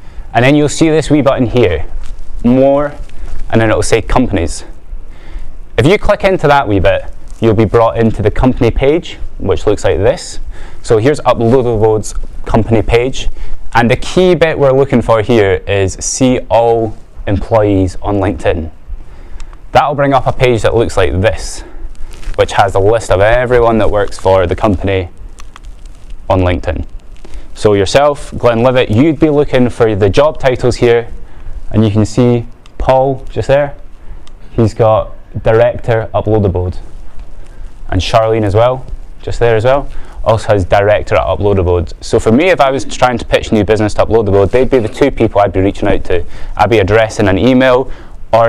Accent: British